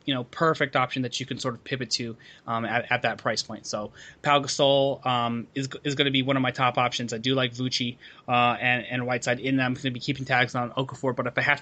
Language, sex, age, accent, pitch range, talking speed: English, male, 20-39, American, 130-175 Hz, 270 wpm